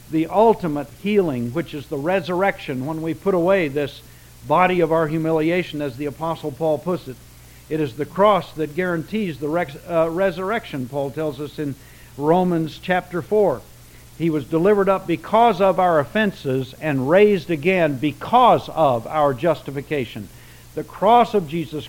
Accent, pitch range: American, 140-180 Hz